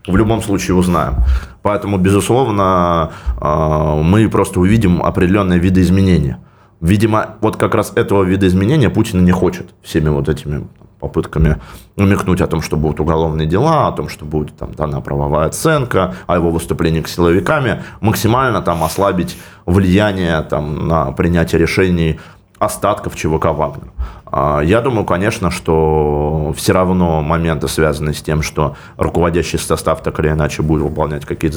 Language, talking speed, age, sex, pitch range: Russian, 145 wpm, 20-39, male, 80-100 Hz